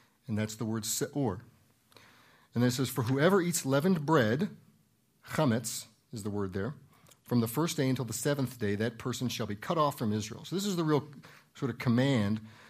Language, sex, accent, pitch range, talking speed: English, male, American, 115-145 Hz, 205 wpm